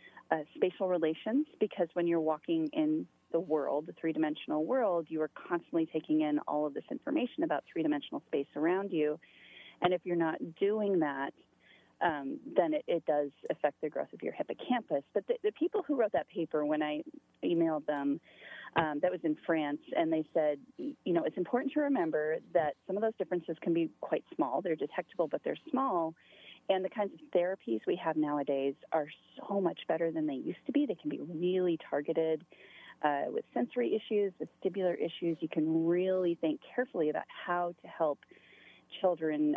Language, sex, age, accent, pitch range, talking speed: English, female, 30-49, American, 155-245 Hz, 185 wpm